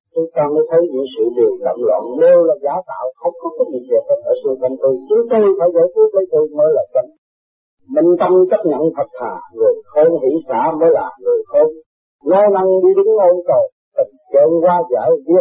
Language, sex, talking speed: Vietnamese, male, 210 wpm